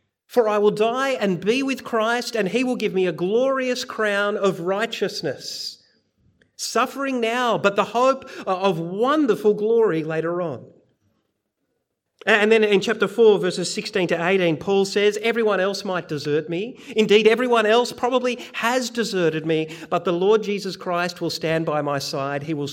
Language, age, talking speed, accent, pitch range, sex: English, 40-59, 165 wpm, Australian, 155-220 Hz, male